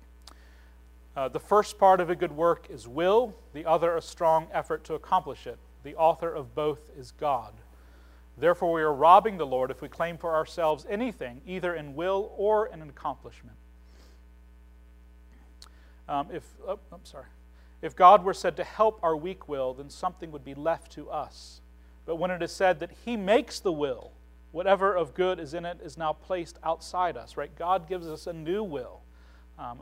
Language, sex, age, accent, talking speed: English, male, 40-59, American, 185 wpm